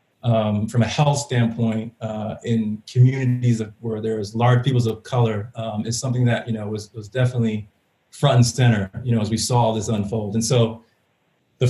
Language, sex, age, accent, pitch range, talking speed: English, male, 30-49, American, 115-125 Hz, 195 wpm